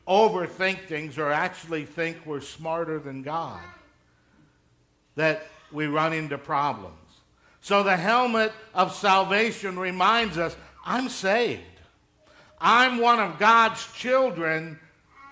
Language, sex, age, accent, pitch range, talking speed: English, male, 60-79, American, 150-220 Hz, 110 wpm